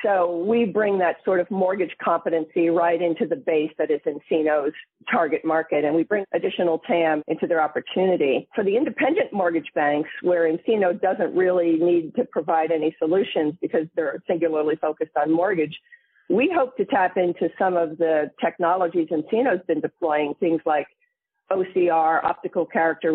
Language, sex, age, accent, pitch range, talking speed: English, female, 50-69, American, 160-185 Hz, 160 wpm